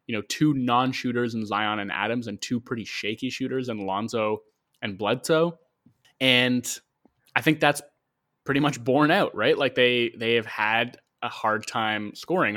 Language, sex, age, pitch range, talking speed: English, male, 20-39, 105-130 Hz, 165 wpm